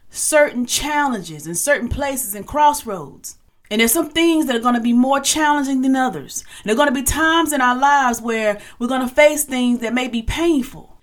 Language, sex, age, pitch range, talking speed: English, female, 40-59, 235-295 Hz, 220 wpm